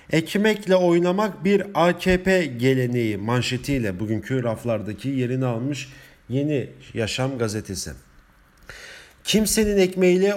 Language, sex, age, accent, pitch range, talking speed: German, male, 40-59, Turkish, 120-155 Hz, 85 wpm